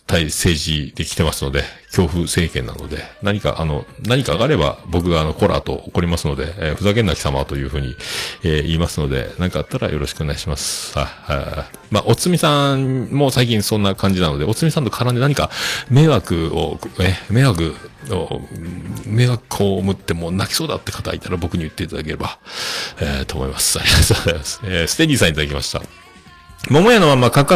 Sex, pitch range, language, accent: male, 85-135 Hz, Japanese, native